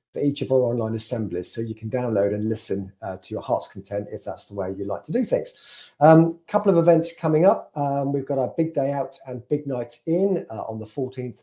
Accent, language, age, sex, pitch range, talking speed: British, English, 40-59, male, 110-140 Hz, 250 wpm